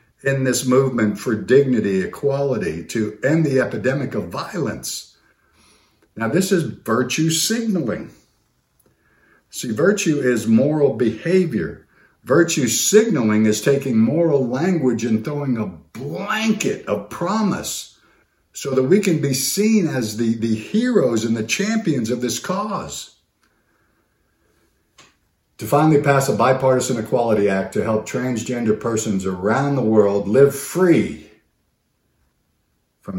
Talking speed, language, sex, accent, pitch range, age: 120 wpm, English, male, American, 100-140 Hz, 50-69